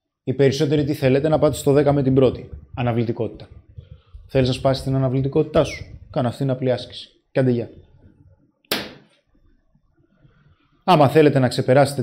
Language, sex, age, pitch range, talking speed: Greek, male, 20-39, 115-140 Hz, 145 wpm